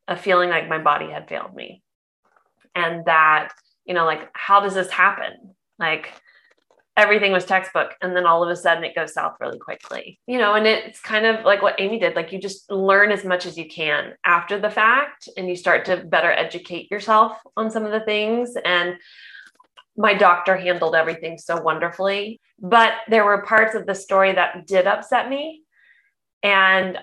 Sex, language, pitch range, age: female, English, 175-210 Hz, 20-39